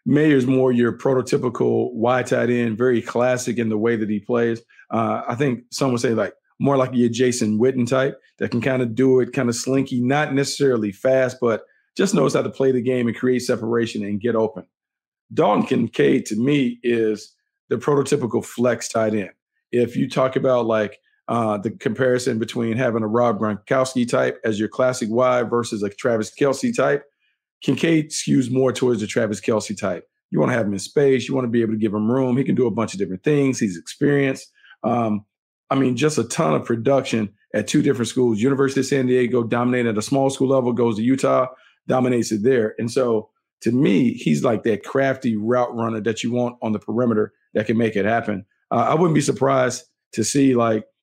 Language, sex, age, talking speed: English, male, 40-59, 210 wpm